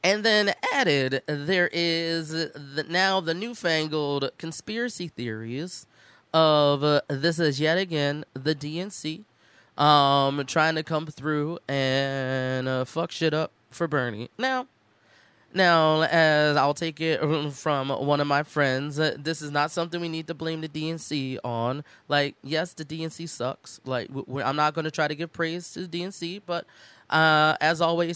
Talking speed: 160 wpm